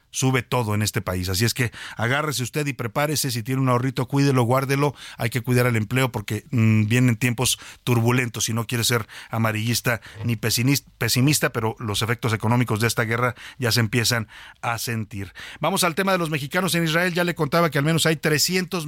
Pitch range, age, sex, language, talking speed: 120-150 Hz, 50-69, male, Spanish, 195 wpm